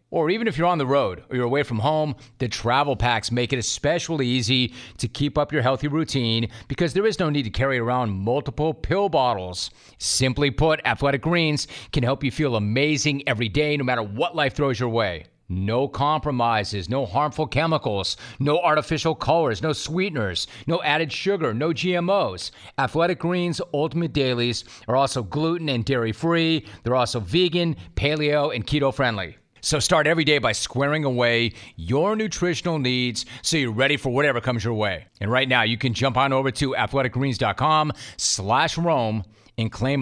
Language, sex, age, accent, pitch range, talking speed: English, male, 40-59, American, 115-150 Hz, 170 wpm